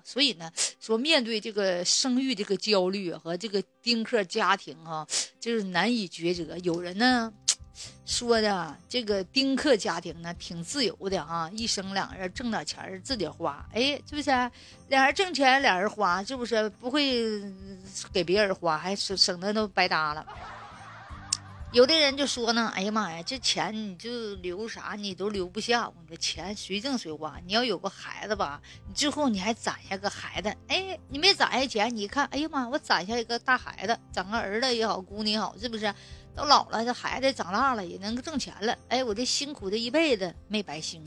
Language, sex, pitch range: Chinese, female, 195-250 Hz